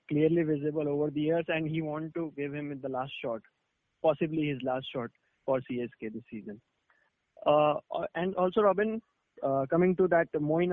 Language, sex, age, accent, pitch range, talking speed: English, male, 20-39, Indian, 150-175 Hz, 175 wpm